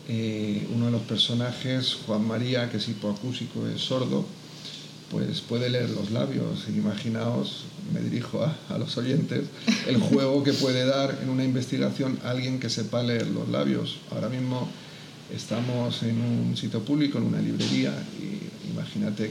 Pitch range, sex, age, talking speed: 115-135 Hz, male, 40-59, 155 wpm